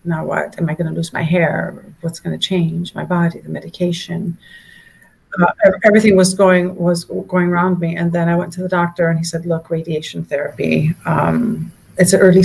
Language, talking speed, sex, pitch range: English, 200 wpm, female, 165-180 Hz